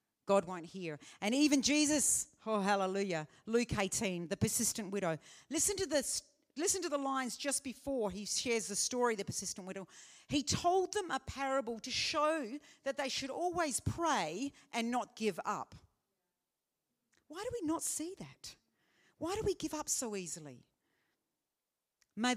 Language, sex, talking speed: English, female, 155 wpm